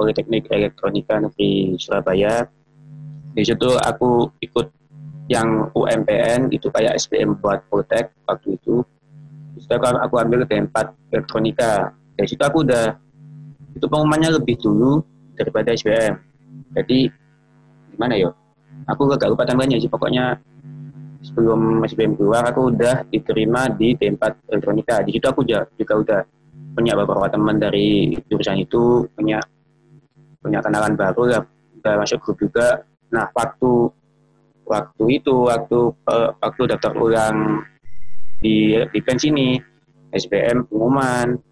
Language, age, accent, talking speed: Indonesian, 20-39, native, 125 wpm